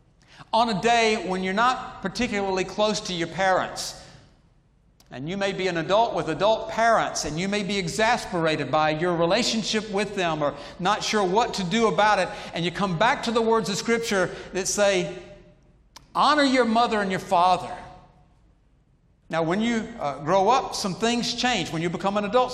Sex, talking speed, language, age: male, 180 wpm, English, 60-79